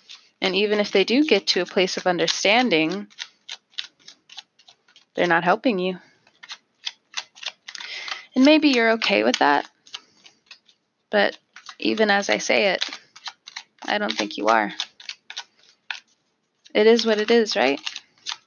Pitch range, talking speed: 205-240 Hz, 125 wpm